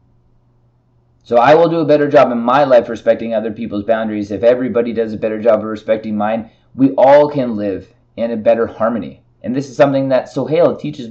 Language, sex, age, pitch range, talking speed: English, male, 20-39, 115-135 Hz, 205 wpm